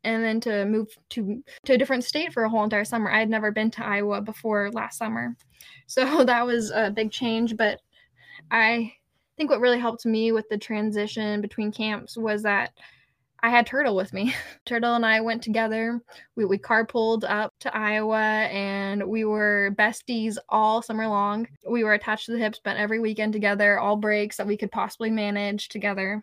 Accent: American